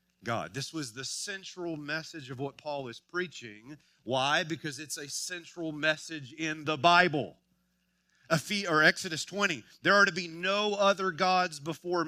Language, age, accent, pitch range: English, 40-59, American, 130-175 Hz